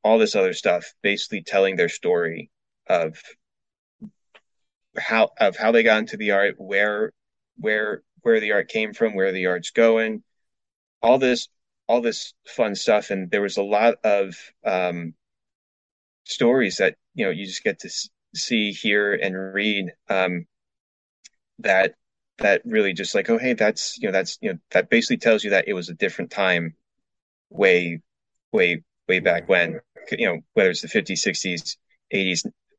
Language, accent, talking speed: English, American, 165 wpm